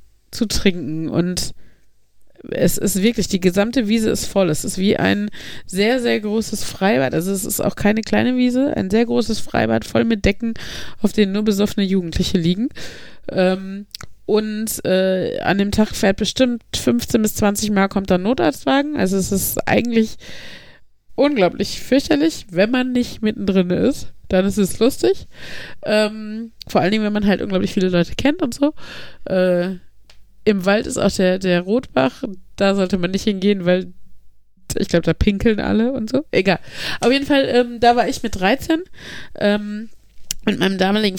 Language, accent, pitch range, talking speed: German, German, 190-235 Hz, 165 wpm